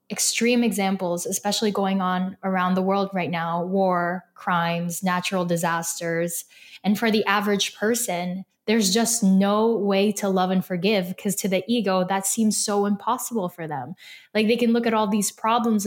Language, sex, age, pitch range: English, female, 10-29, 195-225 Hz